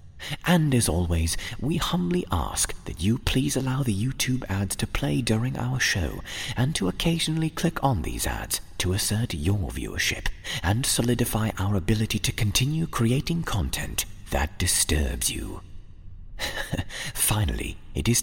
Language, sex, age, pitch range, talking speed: English, male, 30-49, 85-120 Hz, 140 wpm